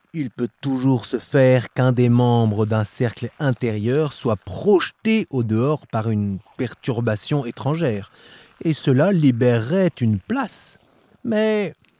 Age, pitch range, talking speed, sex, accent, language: 30-49, 115-155 Hz, 125 wpm, male, French, French